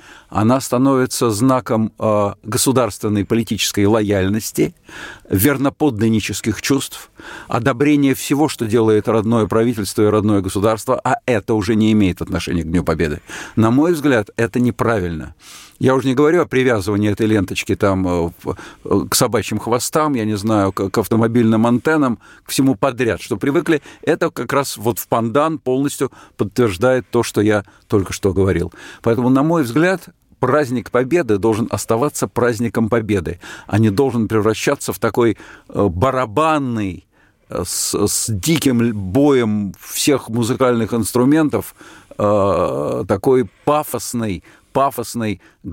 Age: 50-69